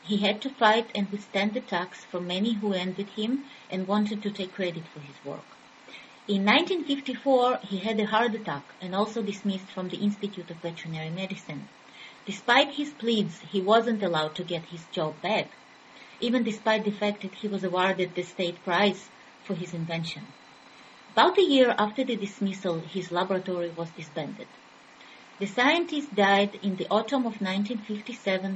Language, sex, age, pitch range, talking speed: English, female, 30-49, 180-220 Hz, 165 wpm